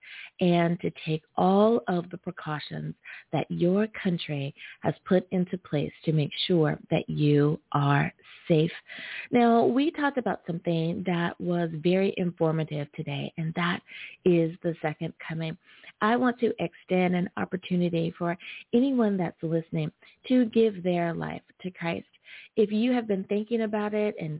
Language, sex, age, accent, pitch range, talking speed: English, female, 30-49, American, 165-205 Hz, 150 wpm